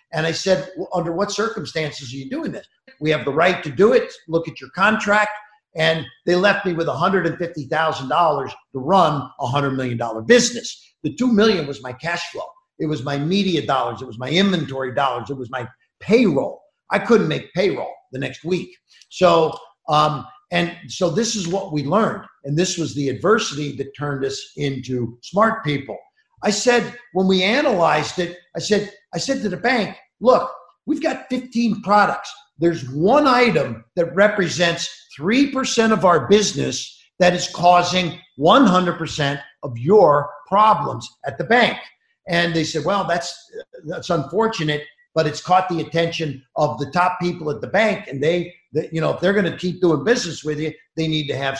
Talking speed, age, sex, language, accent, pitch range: 180 wpm, 50-69, male, English, American, 150-205 Hz